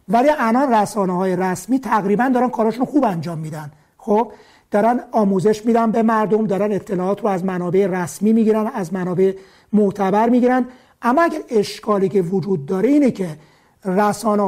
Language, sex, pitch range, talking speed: Persian, male, 195-235 Hz, 155 wpm